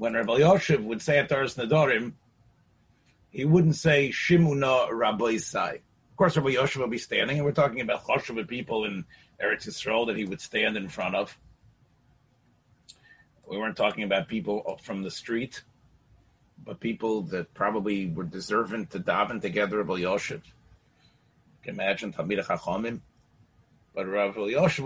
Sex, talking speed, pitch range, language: male, 145 wpm, 110-145 Hz, English